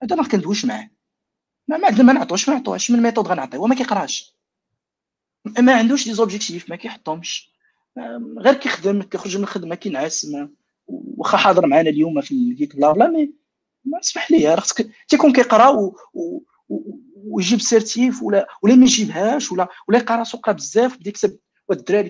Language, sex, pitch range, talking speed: Arabic, male, 185-255 Hz, 170 wpm